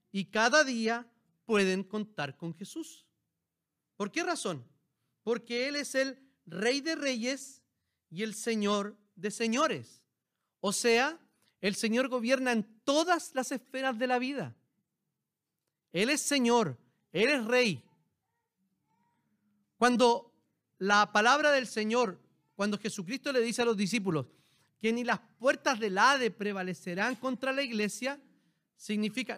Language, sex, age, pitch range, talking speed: Spanish, male, 40-59, 195-260 Hz, 130 wpm